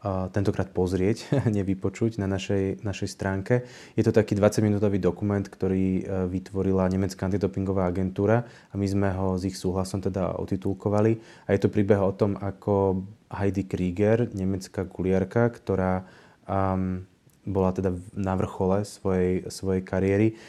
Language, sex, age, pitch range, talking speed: Slovak, male, 20-39, 95-105 Hz, 145 wpm